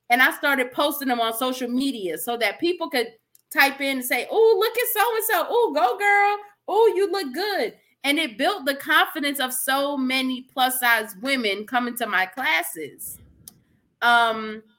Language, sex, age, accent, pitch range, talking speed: English, female, 30-49, American, 230-310 Hz, 170 wpm